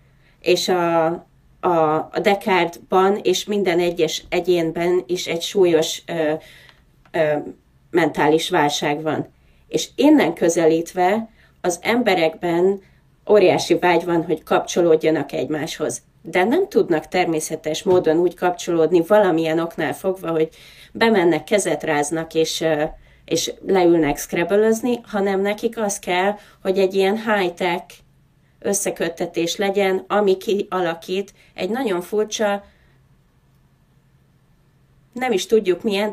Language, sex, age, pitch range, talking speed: Hungarian, female, 30-49, 160-200 Hz, 105 wpm